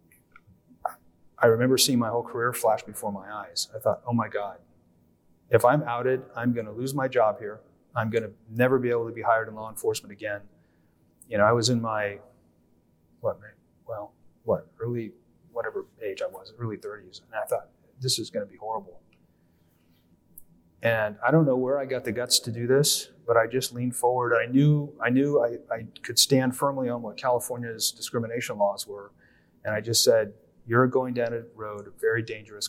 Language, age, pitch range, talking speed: English, 30-49, 100-130 Hz, 190 wpm